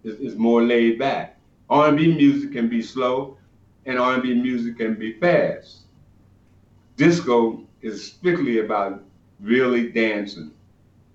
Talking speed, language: 115 wpm, English